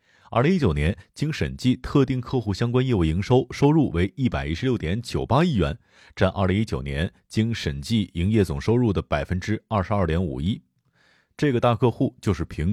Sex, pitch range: male, 90-120 Hz